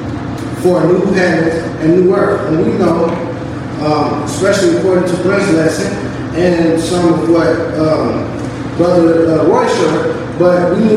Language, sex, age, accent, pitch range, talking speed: English, male, 20-39, American, 160-190 Hz, 160 wpm